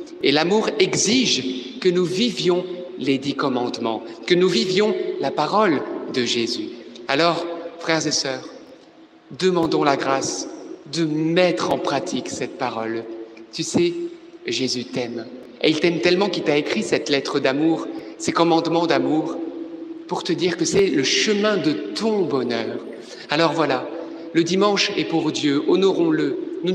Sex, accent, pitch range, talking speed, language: male, French, 160-215 Hz, 145 wpm, French